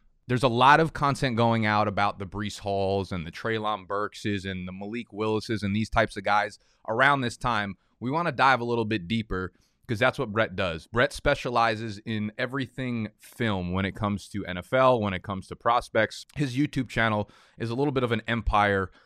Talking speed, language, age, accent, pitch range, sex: 205 wpm, English, 20-39, American, 100-120 Hz, male